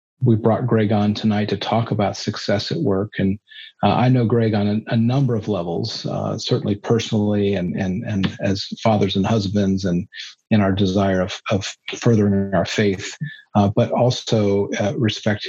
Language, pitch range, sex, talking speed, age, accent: English, 100-115 Hz, male, 180 wpm, 40-59, American